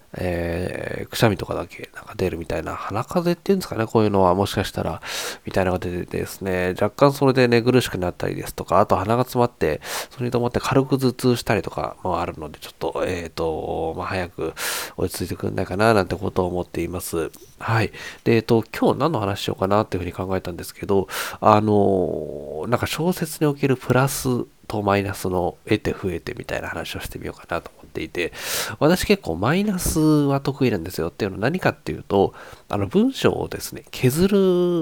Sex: male